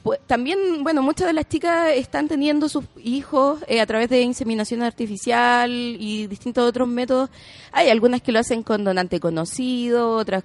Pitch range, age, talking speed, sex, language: 215-275 Hz, 30-49, 165 wpm, female, Spanish